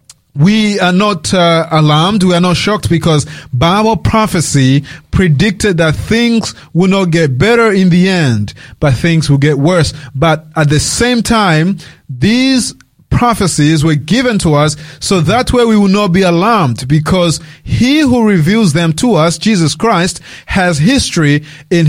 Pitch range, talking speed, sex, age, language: 150-200 Hz, 160 wpm, male, 30-49, English